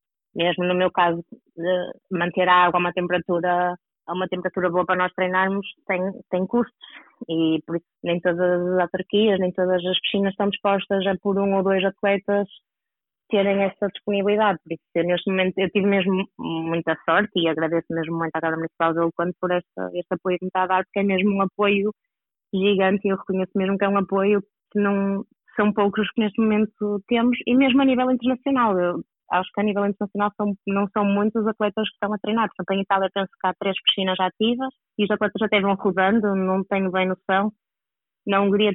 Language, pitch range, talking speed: Portuguese, 180-205 Hz, 210 wpm